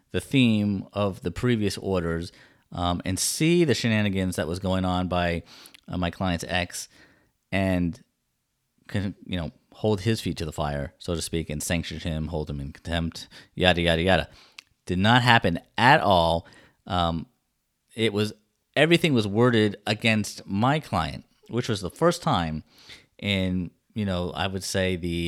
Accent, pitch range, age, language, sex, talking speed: American, 85-115 Hz, 30-49, English, male, 165 wpm